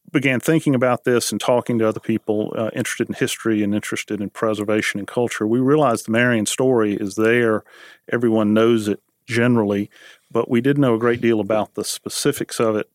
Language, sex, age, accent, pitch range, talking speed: English, male, 40-59, American, 105-120 Hz, 195 wpm